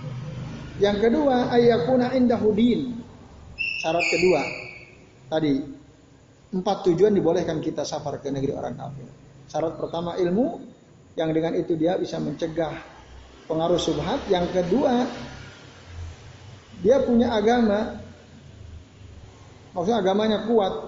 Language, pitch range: Indonesian, 140-205 Hz